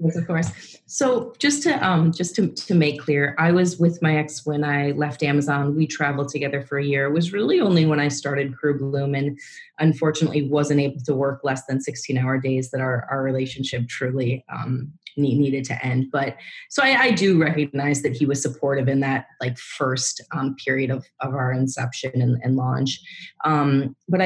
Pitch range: 135-165 Hz